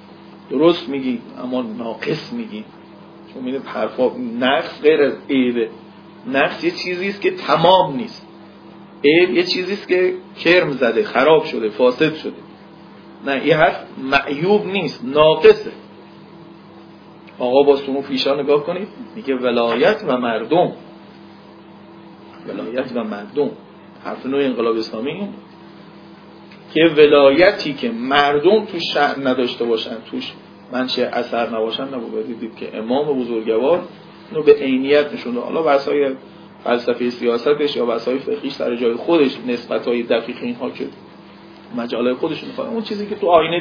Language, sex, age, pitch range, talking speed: Persian, male, 40-59, 120-170 Hz, 125 wpm